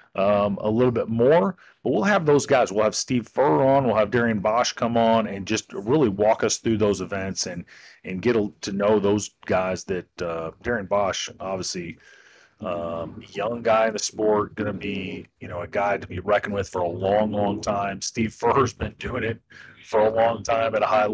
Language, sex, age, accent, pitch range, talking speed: English, male, 30-49, American, 105-140 Hz, 215 wpm